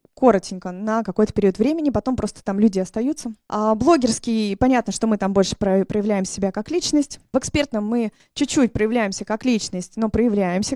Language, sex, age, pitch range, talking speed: Russian, female, 20-39, 195-245 Hz, 165 wpm